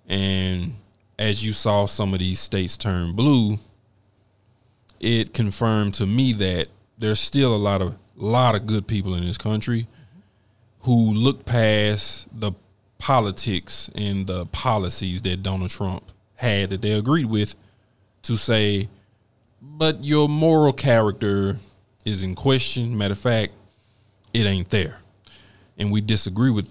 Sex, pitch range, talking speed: male, 100-115 Hz, 140 wpm